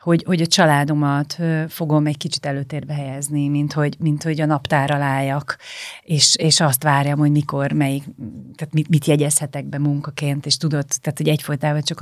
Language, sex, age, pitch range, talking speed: Hungarian, female, 30-49, 145-170 Hz, 170 wpm